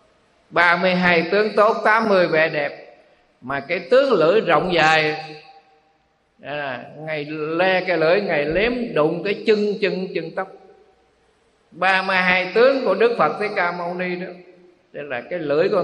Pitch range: 160-210 Hz